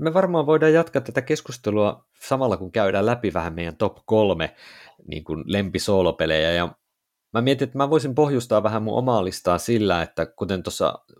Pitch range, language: 85-115 Hz, Finnish